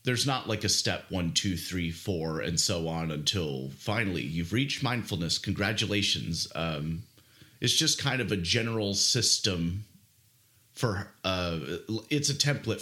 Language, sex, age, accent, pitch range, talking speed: English, male, 30-49, American, 90-110 Hz, 145 wpm